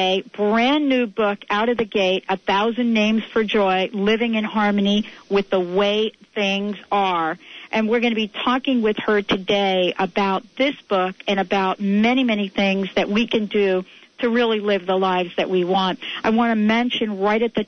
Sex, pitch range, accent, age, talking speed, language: female, 200-230 Hz, American, 50-69, 190 wpm, English